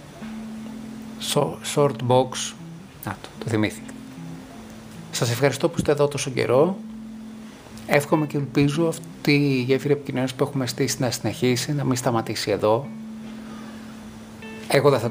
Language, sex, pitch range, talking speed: Greek, male, 115-170 Hz, 125 wpm